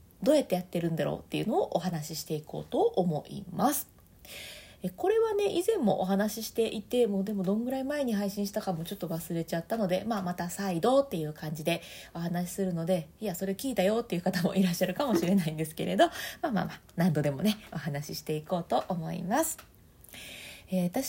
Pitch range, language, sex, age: 175-245 Hz, Japanese, female, 20-39